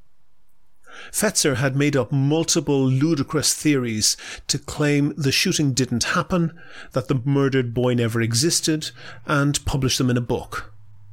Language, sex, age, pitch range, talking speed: English, male, 40-59, 125-155 Hz, 135 wpm